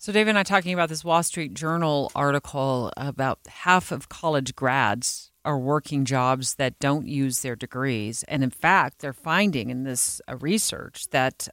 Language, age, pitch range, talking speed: English, 40-59, 135-180 Hz, 175 wpm